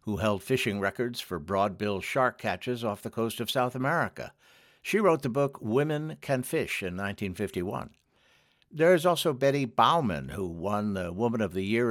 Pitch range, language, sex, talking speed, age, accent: 100-130 Hz, English, male, 170 wpm, 60-79, American